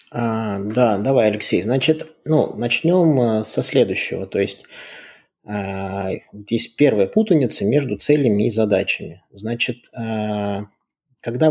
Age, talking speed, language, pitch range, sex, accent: 20-39, 100 wpm, Russian, 100-140 Hz, male, native